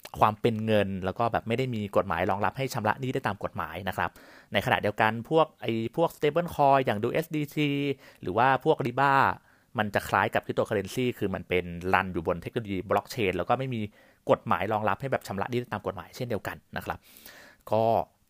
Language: Thai